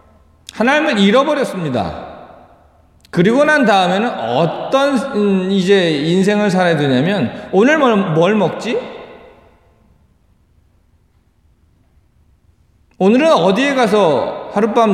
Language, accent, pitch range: Korean, native, 165-260 Hz